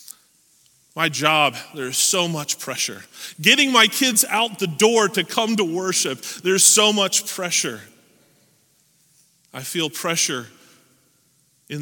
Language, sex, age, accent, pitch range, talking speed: English, male, 30-49, American, 140-205 Hz, 120 wpm